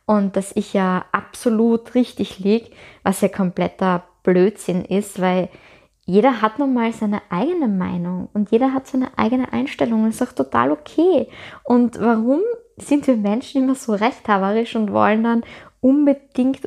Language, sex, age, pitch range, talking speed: German, female, 20-39, 195-240 Hz, 155 wpm